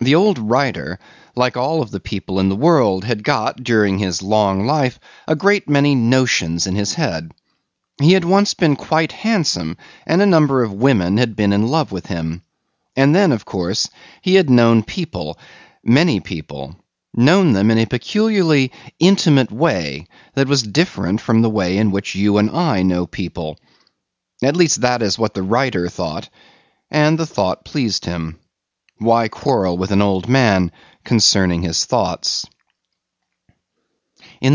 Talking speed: 165 wpm